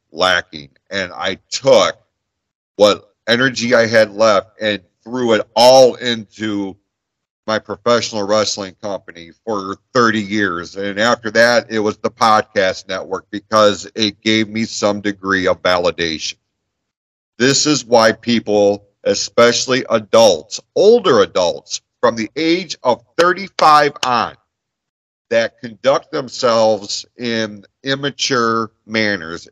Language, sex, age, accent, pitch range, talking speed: English, male, 40-59, American, 100-120 Hz, 115 wpm